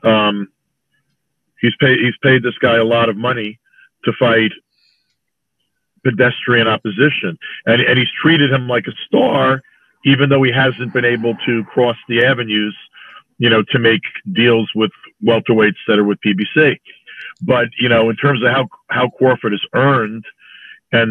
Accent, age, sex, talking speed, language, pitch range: American, 40-59, male, 160 wpm, English, 115-135 Hz